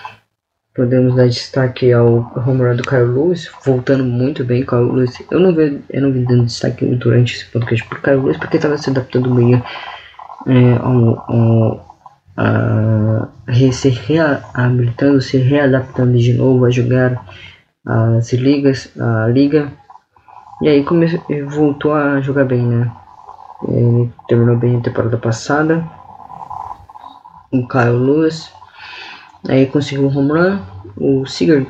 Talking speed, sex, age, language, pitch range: 130 wpm, female, 20-39, Portuguese, 120-145 Hz